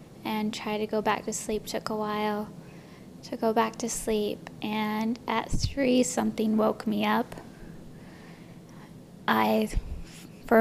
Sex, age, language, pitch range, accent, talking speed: female, 10-29, English, 200-225 Hz, American, 135 wpm